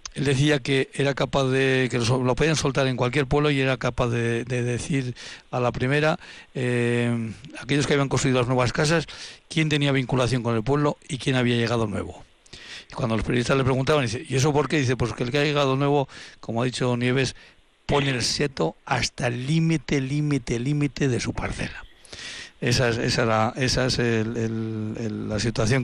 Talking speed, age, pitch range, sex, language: 200 wpm, 60-79, 120-145 Hz, male, Spanish